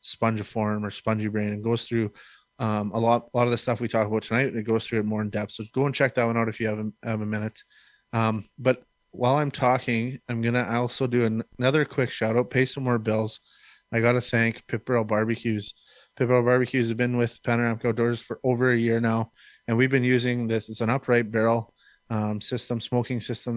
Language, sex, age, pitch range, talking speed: English, male, 20-39, 110-120 Hz, 230 wpm